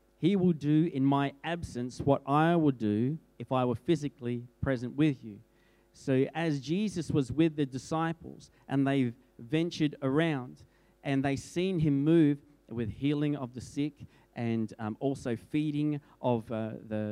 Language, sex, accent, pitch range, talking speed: English, male, Australian, 110-145 Hz, 165 wpm